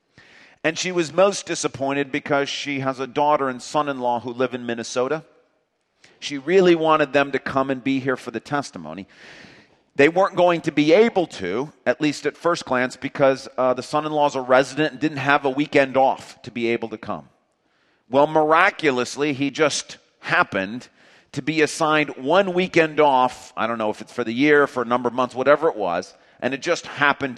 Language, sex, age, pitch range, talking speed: English, male, 40-59, 130-170 Hz, 195 wpm